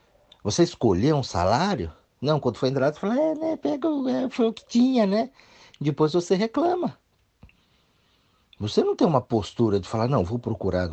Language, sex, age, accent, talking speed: Portuguese, male, 50-69, Brazilian, 165 wpm